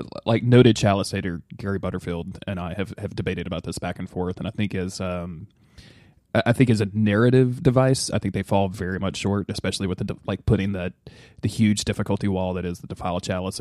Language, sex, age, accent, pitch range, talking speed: English, male, 20-39, American, 95-115 Hz, 210 wpm